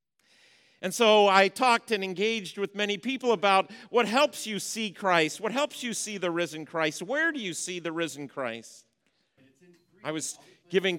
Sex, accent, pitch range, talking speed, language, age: male, American, 160-195 Hz, 175 wpm, English, 40-59